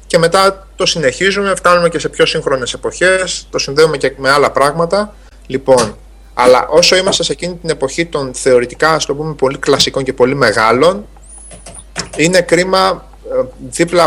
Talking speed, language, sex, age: 160 wpm, Greek, male, 30-49